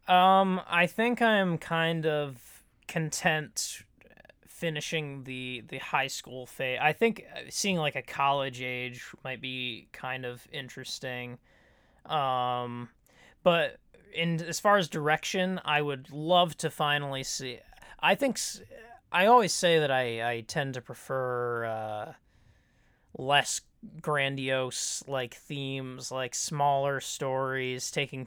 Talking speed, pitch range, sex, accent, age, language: 125 wpm, 120-150 Hz, male, American, 20-39, English